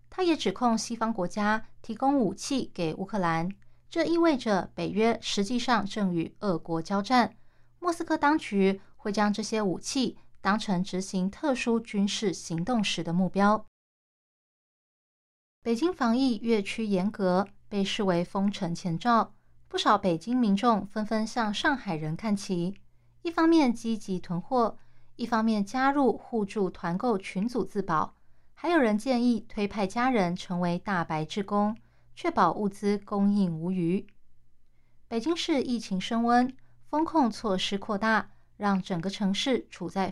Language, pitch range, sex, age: Chinese, 185-240 Hz, female, 20-39